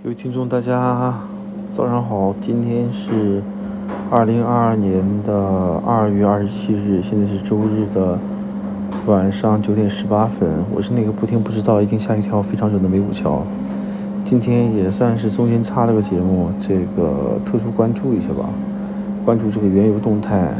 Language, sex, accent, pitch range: Chinese, male, native, 100-125 Hz